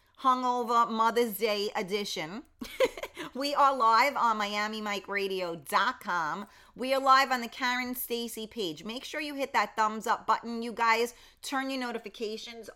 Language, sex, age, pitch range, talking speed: English, female, 30-49, 195-260 Hz, 140 wpm